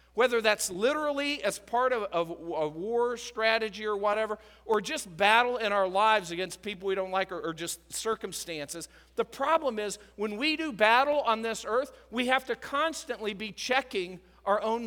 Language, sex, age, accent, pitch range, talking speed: English, male, 50-69, American, 185-255 Hz, 175 wpm